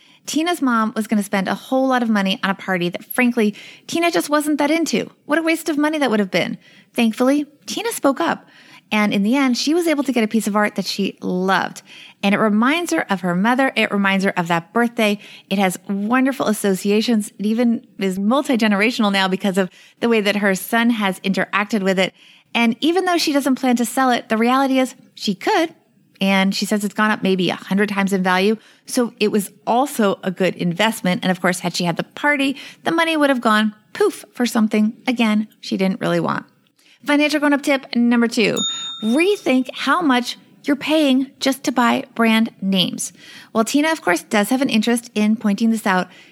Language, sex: English, female